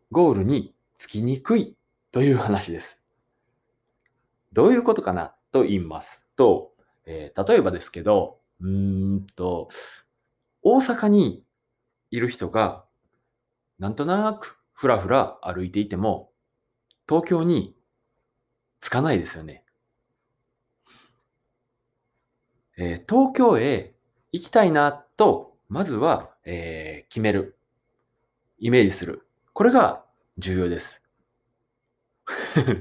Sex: male